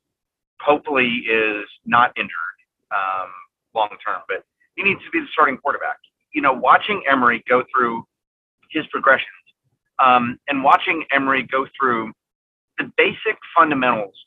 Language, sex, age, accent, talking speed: English, male, 40-59, American, 130 wpm